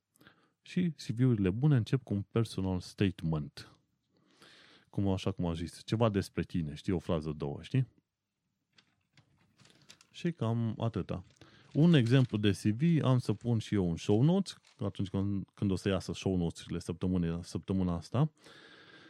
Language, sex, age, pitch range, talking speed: Romanian, male, 30-49, 90-115 Hz, 150 wpm